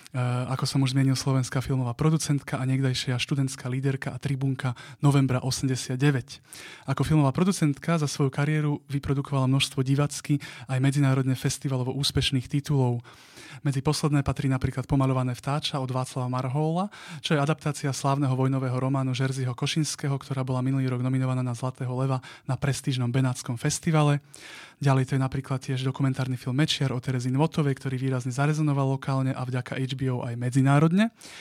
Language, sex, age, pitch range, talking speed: Slovak, male, 20-39, 130-145 Hz, 150 wpm